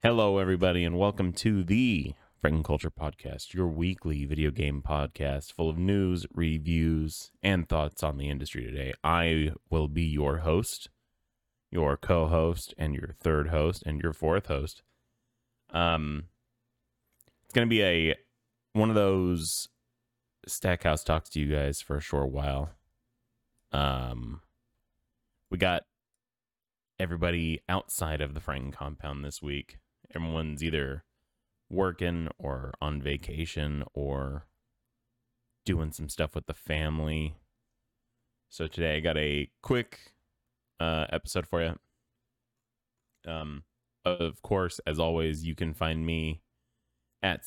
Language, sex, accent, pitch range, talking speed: English, male, American, 75-95 Hz, 130 wpm